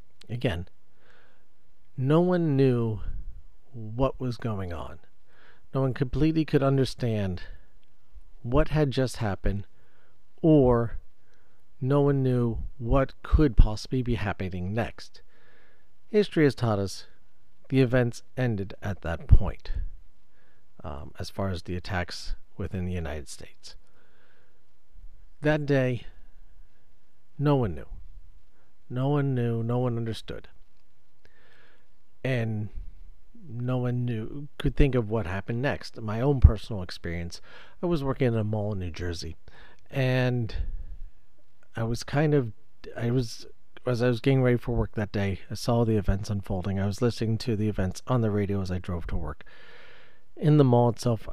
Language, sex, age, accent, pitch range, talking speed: English, male, 50-69, American, 95-125 Hz, 140 wpm